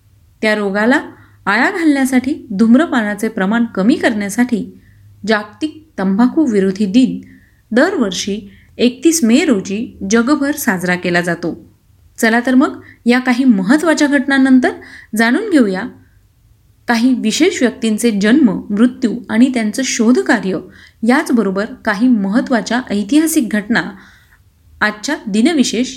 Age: 30-49